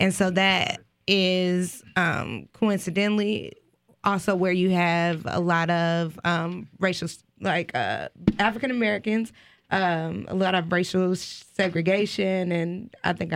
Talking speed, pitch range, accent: 115 wpm, 165-195 Hz, American